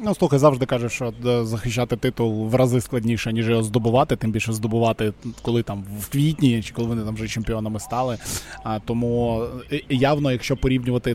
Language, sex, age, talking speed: Ukrainian, male, 20-39, 180 wpm